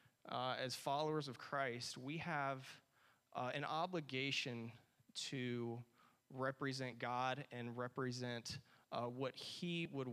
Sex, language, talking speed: male, English, 115 wpm